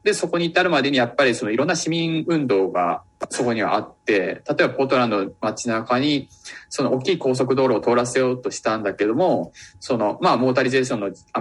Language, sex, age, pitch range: Japanese, male, 20-39, 105-150 Hz